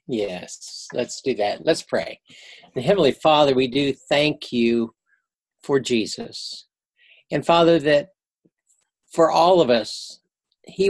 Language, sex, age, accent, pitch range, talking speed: English, male, 60-79, American, 140-180 Hz, 125 wpm